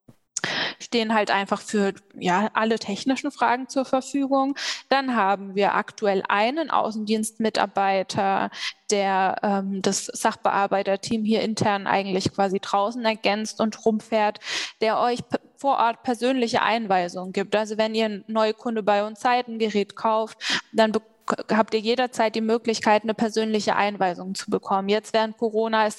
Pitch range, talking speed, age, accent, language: 200-230 Hz, 140 wpm, 20-39, German, German